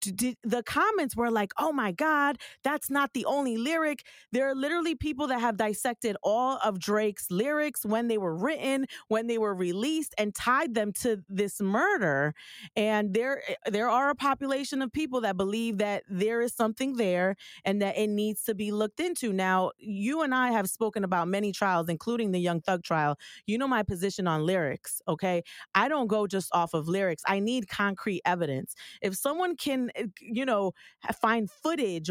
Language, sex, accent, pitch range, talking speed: English, female, American, 185-250 Hz, 185 wpm